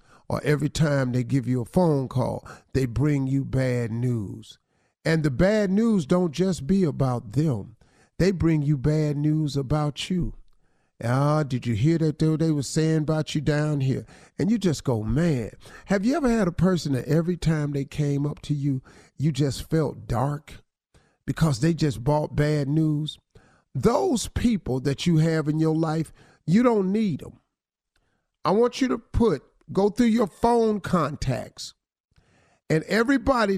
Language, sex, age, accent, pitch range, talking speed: English, male, 50-69, American, 140-195 Hz, 170 wpm